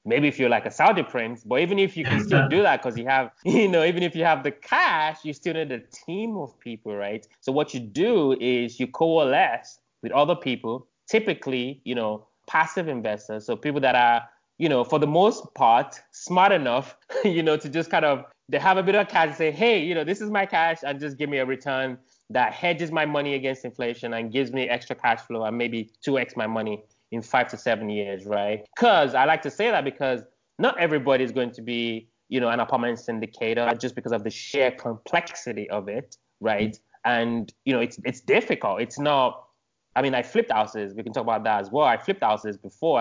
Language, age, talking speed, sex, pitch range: English, 20-39, 225 wpm, male, 115-160 Hz